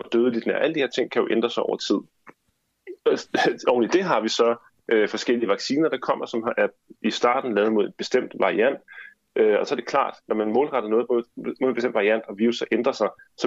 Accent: native